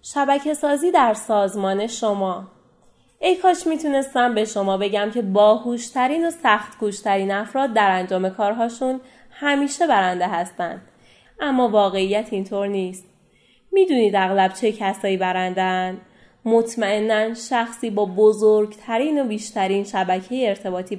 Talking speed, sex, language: 115 wpm, female, Persian